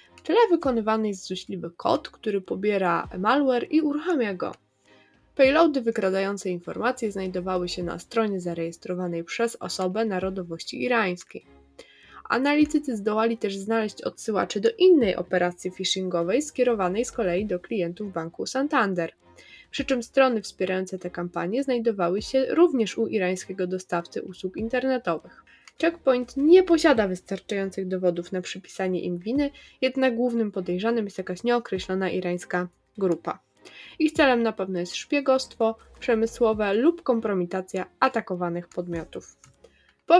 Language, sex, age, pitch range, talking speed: Polish, female, 20-39, 180-245 Hz, 120 wpm